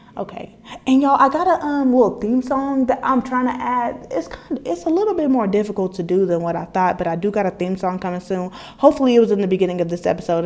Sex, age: female, 20-39